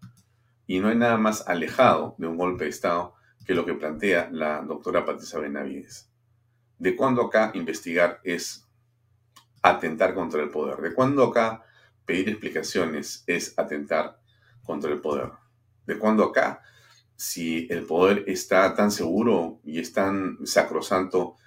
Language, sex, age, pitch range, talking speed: Spanish, male, 40-59, 85-115 Hz, 145 wpm